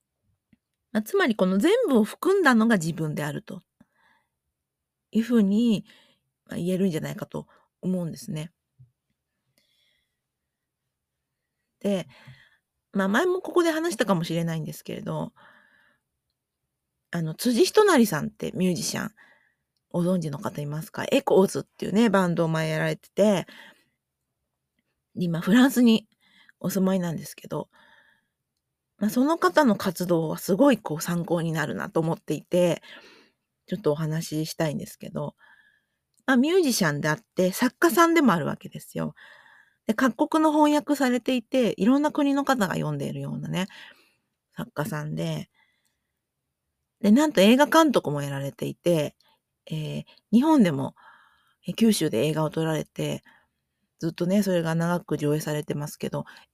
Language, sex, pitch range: Japanese, female, 155-245 Hz